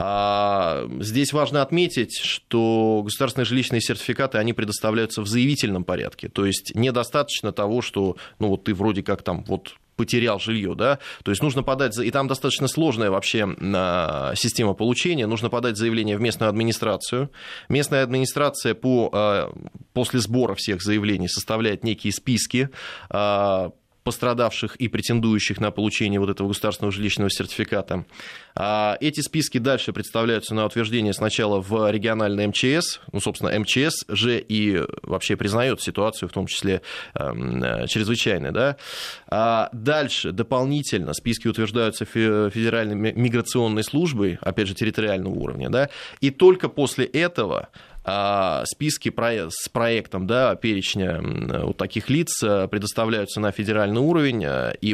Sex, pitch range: male, 105-125 Hz